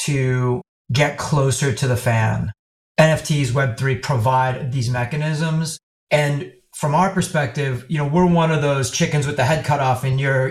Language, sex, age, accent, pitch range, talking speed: English, male, 30-49, American, 125-155 Hz, 165 wpm